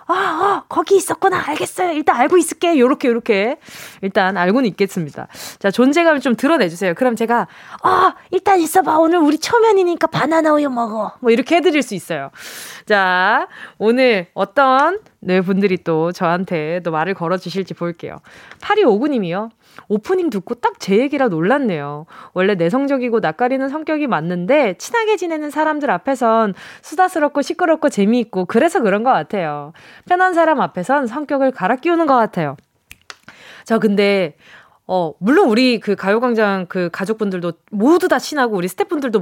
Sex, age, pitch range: female, 20-39, 190-315 Hz